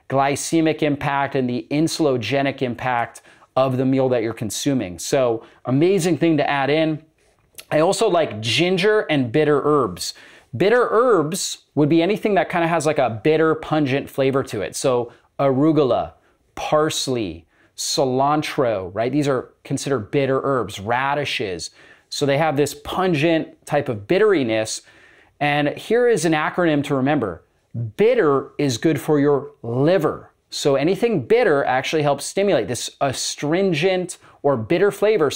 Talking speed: 145 wpm